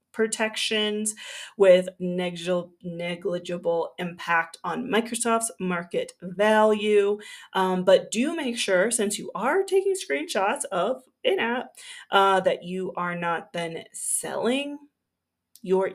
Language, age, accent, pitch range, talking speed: English, 30-49, American, 185-240 Hz, 110 wpm